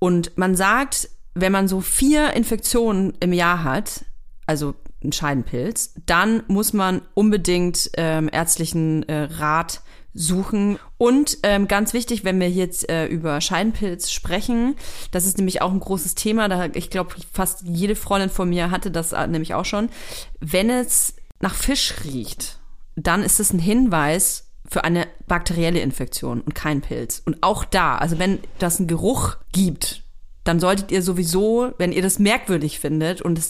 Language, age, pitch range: German, 30-49, 165-210 Hz